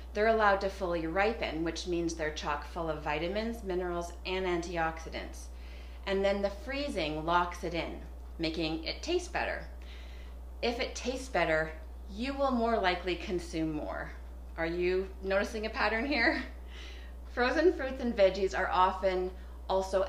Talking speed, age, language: 145 wpm, 30-49, English